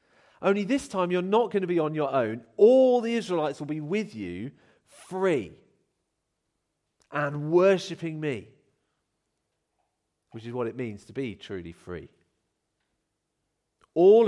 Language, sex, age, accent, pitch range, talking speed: English, male, 40-59, British, 115-190 Hz, 135 wpm